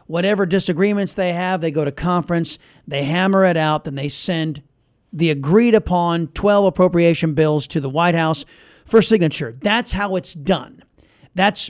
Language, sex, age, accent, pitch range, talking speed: English, male, 40-59, American, 155-205 Hz, 165 wpm